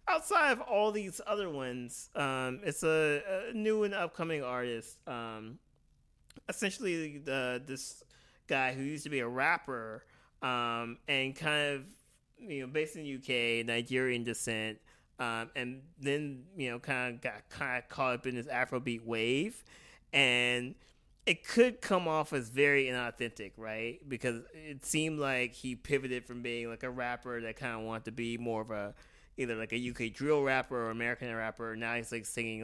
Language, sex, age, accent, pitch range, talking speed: English, male, 20-39, American, 115-145 Hz, 170 wpm